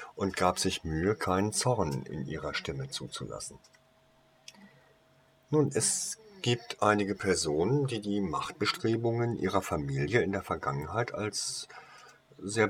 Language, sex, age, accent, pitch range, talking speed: German, male, 50-69, German, 100-130 Hz, 120 wpm